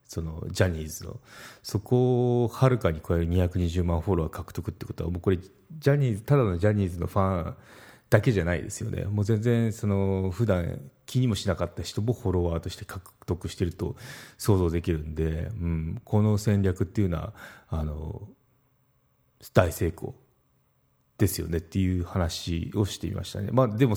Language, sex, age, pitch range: Japanese, male, 30-49, 90-125 Hz